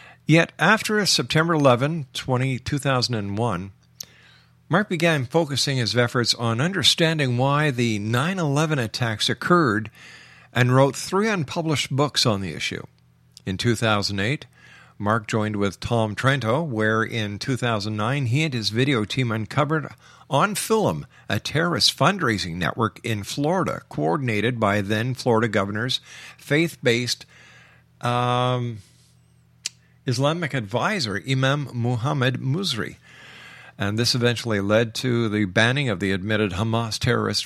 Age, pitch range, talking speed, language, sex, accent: 50-69, 105-135 Hz, 110 wpm, English, male, American